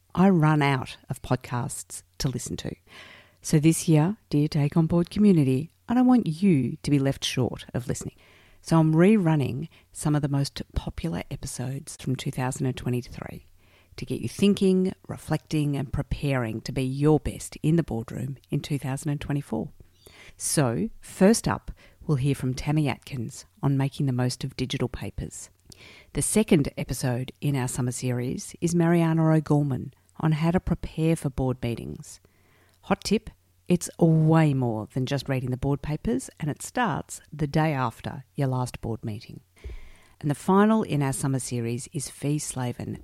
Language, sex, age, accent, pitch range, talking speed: English, female, 50-69, Australian, 120-160 Hz, 165 wpm